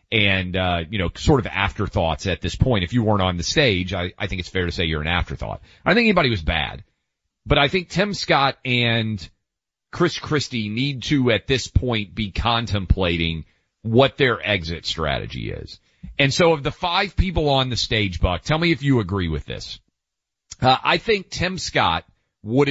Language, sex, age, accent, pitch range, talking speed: English, male, 40-59, American, 95-130 Hz, 200 wpm